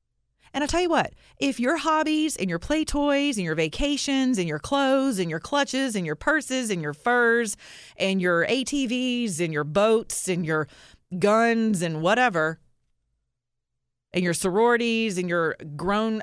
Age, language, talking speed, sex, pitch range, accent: 30-49, English, 165 wpm, female, 135-225 Hz, American